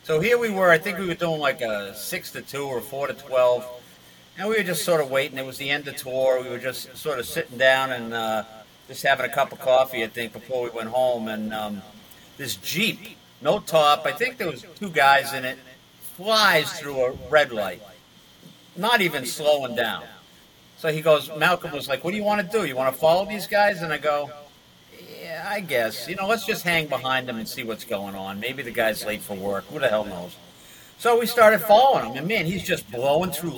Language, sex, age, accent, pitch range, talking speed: English, male, 50-69, American, 130-180 Hz, 230 wpm